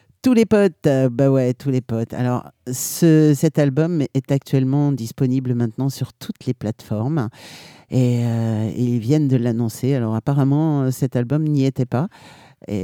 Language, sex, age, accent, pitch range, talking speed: French, male, 50-69, French, 115-140 Hz, 165 wpm